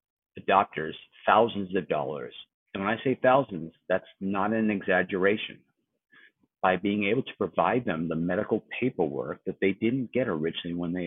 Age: 50-69